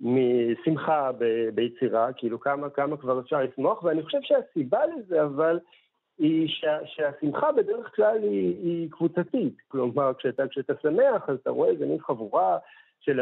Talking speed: 140 wpm